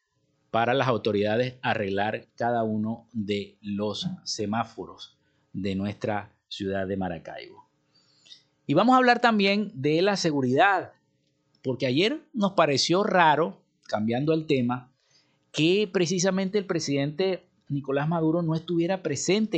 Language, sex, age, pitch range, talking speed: Spanish, male, 50-69, 125-170 Hz, 120 wpm